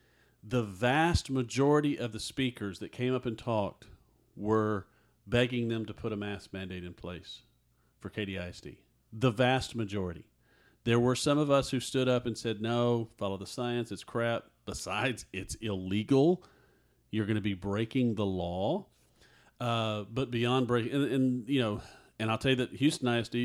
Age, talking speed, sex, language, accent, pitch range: 40-59, 170 wpm, male, English, American, 95-120 Hz